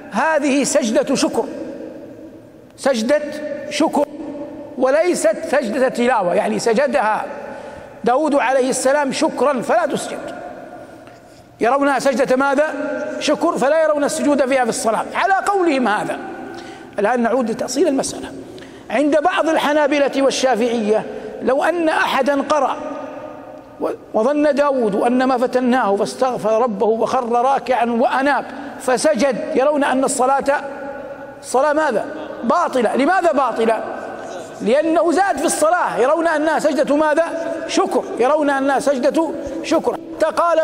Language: Arabic